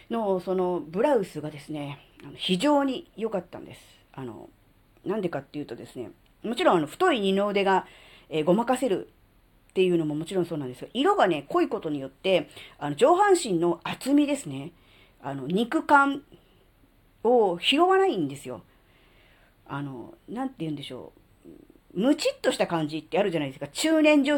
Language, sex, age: Japanese, female, 40-59